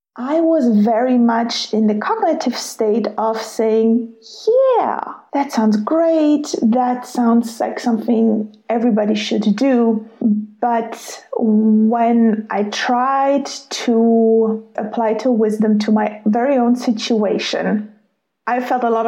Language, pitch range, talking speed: English, 220-265 Hz, 120 wpm